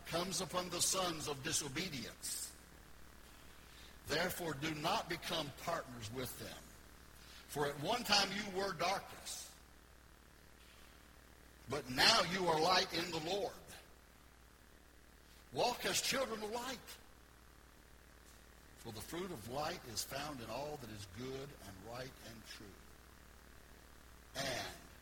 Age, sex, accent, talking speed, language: 60-79, male, American, 120 wpm, English